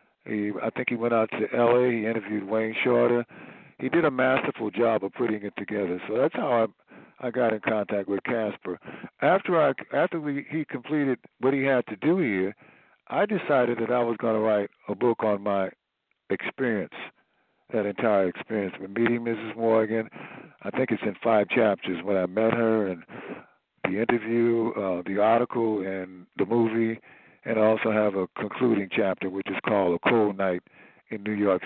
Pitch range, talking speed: 100-120 Hz, 185 wpm